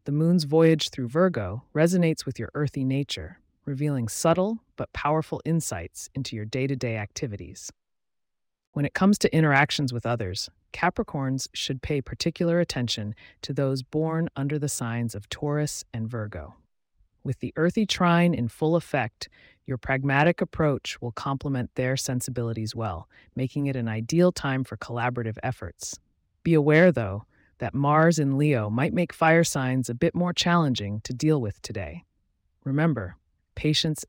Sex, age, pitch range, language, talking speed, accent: female, 30-49, 115-160 Hz, English, 150 wpm, American